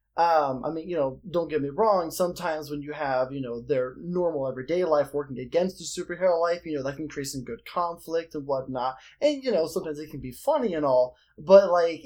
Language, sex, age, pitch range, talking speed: English, male, 20-39, 130-165 Hz, 230 wpm